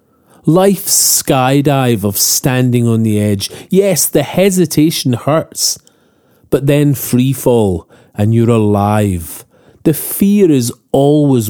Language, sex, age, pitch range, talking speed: English, male, 40-59, 115-170 Hz, 115 wpm